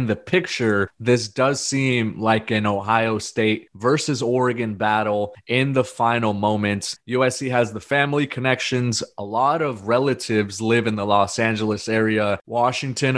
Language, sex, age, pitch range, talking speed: English, male, 30-49, 110-125 Hz, 145 wpm